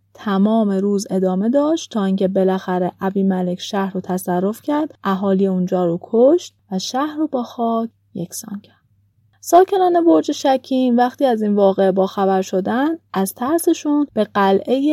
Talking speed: 155 wpm